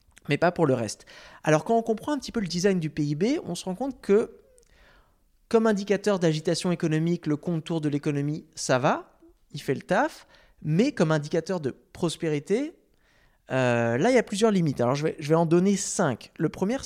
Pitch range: 150-200 Hz